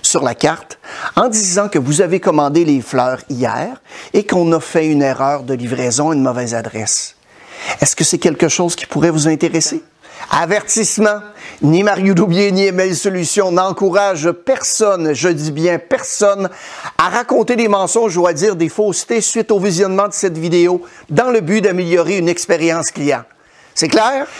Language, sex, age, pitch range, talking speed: French, male, 50-69, 155-210 Hz, 170 wpm